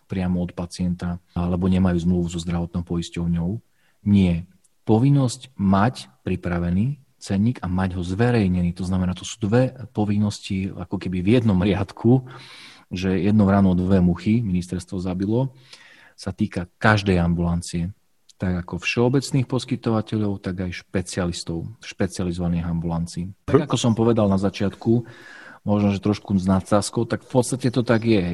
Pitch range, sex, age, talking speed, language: 90-115 Hz, male, 40-59, 140 wpm, Slovak